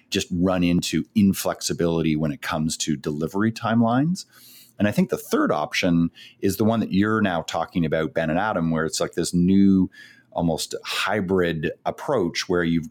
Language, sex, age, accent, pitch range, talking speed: English, male, 40-59, American, 80-100 Hz, 170 wpm